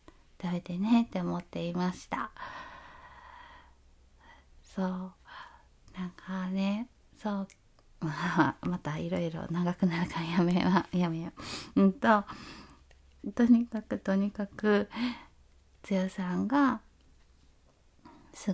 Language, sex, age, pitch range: Japanese, female, 20-39, 185-235 Hz